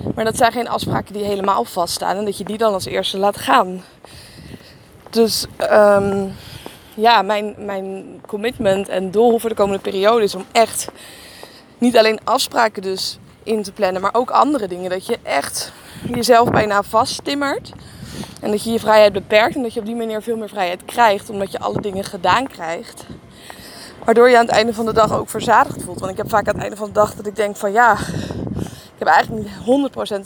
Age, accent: 20-39, Dutch